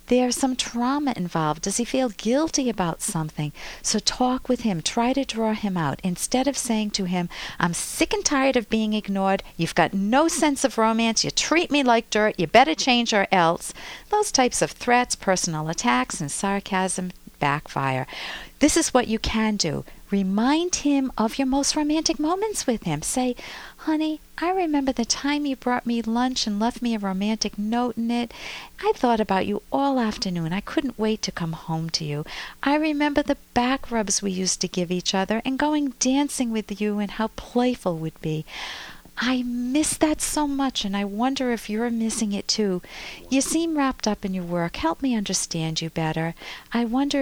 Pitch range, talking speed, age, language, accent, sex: 175-255 Hz, 190 wpm, 50-69, English, American, female